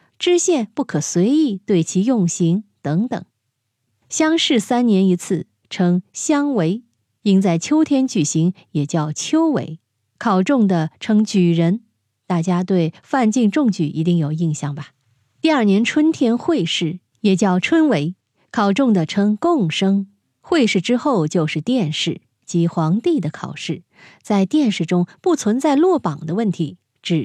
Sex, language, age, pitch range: female, Chinese, 20-39, 165-235 Hz